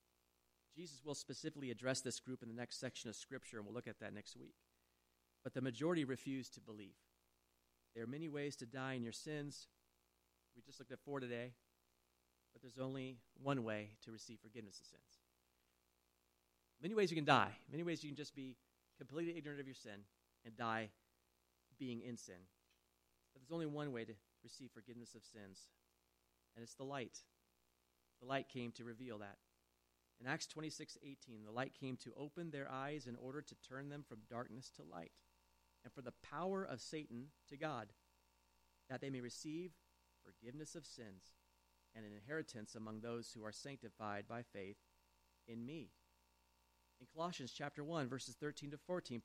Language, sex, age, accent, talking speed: English, male, 40-59, American, 180 wpm